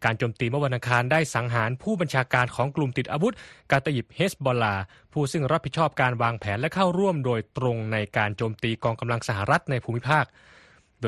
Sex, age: male, 20-39